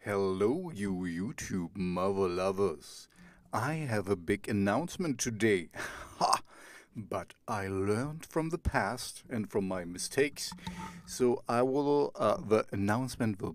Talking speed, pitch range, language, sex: 130 wpm, 100-140 Hz, English, male